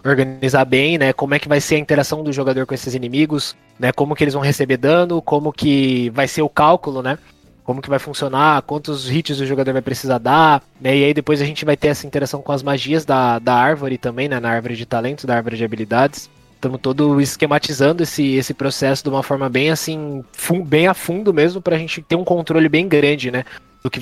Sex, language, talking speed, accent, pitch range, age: male, Portuguese, 225 wpm, Brazilian, 130-150 Hz, 20-39